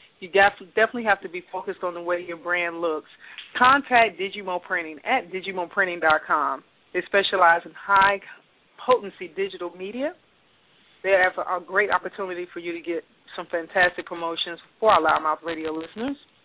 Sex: female